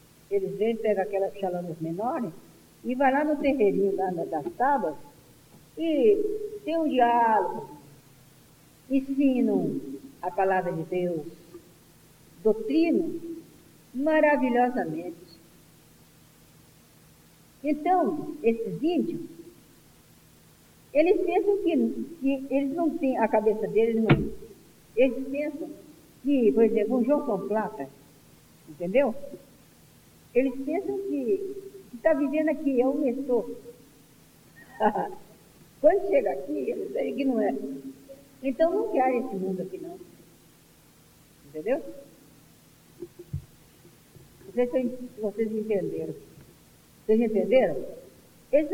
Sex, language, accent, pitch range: female, Portuguese, Brazilian, 210-325 Hz